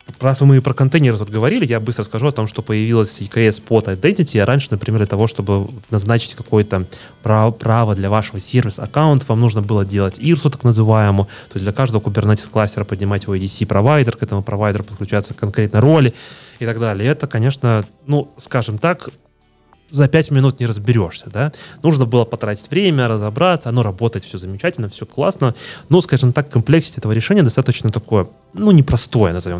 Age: 20-39